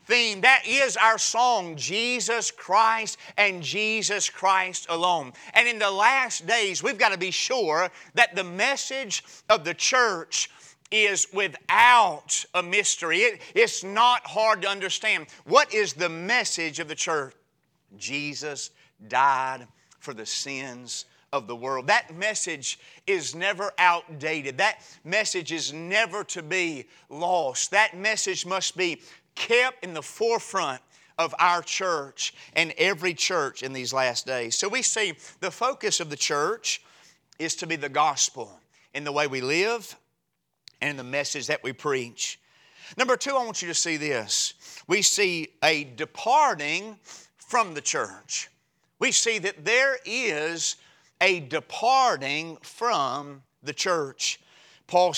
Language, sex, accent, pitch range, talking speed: English, male, American, 150-215 Hz, 140 wpm